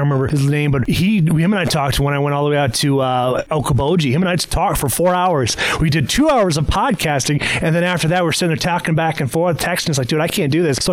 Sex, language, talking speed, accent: male, English, 300 wpm, American